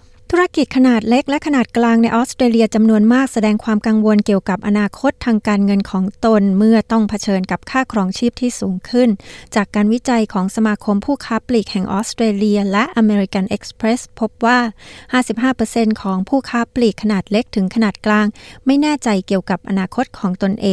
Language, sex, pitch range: Thai, female, 195-235 Hz